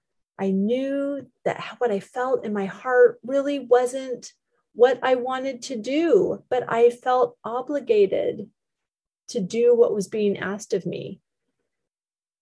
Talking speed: 135 wpm